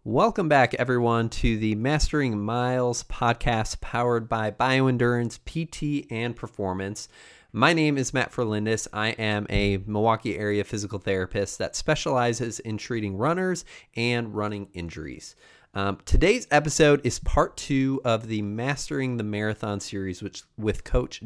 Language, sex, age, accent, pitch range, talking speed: English, male, 30-49, American, 100-130 Hz, 140 wpm